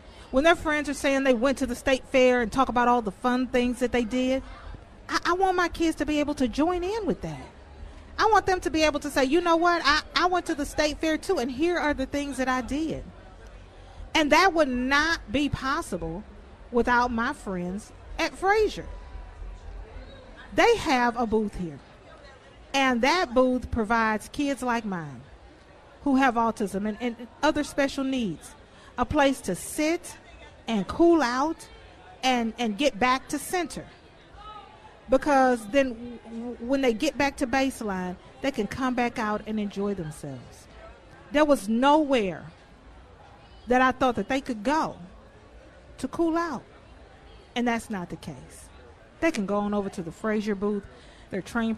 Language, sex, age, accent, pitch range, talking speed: English, female, 40-59, American, 210-290 Hz, 175 wpm